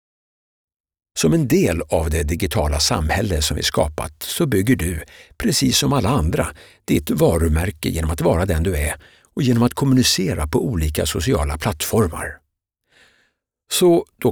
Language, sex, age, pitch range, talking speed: Swedish, male, 60-79, 80-95 Hz, 145 wpm